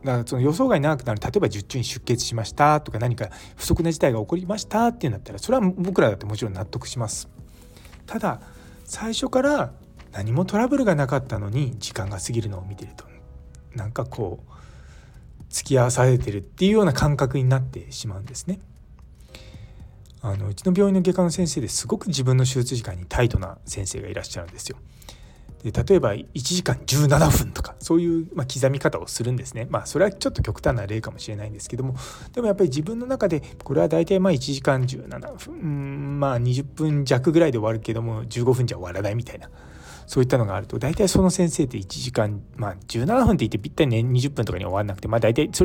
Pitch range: 105-155 Hz